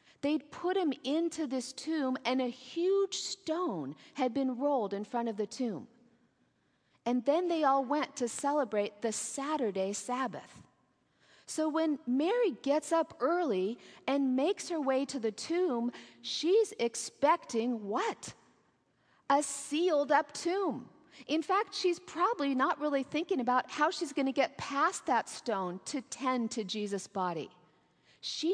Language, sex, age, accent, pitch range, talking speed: English, female, 40-59, American, 245-320 Hz, 145 wpm